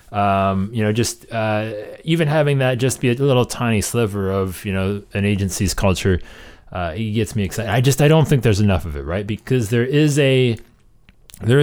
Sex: male